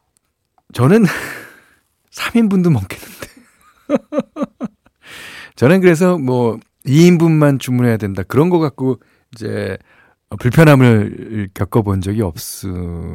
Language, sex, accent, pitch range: Korean, male, native, 100-150 Hz